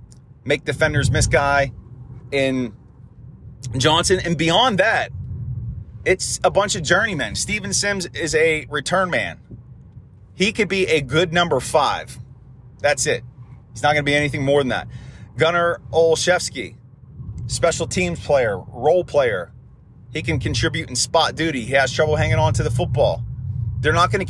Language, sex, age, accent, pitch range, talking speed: English, male, 30-49, American, 125-160 Hz, 155 wpm